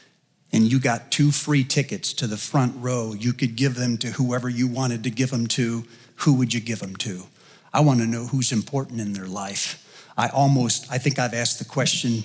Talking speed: 220 wpm